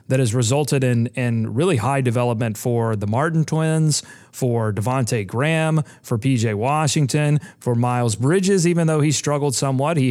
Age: 30-49